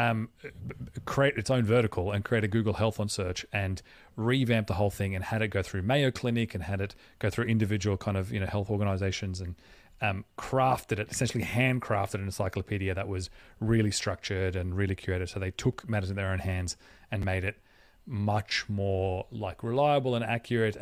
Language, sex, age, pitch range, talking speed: English, male, 30-49, 95-115 Hz, 195 wpm